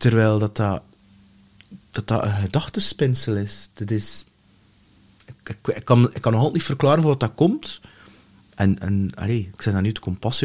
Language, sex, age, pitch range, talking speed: English, male, 30-49, 105-130 Hz, 190 wpm